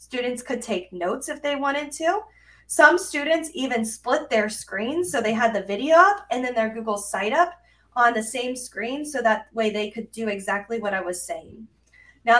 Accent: American